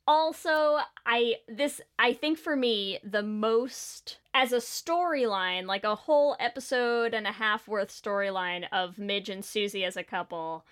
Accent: American